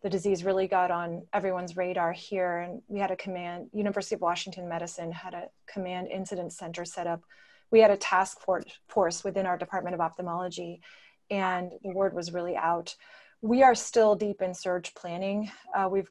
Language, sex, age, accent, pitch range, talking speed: English, female, 30-49, American, 180-210 Hz, 185 wpm